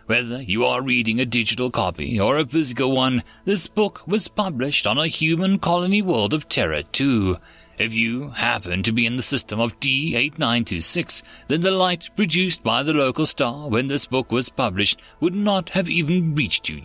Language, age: English, 30-49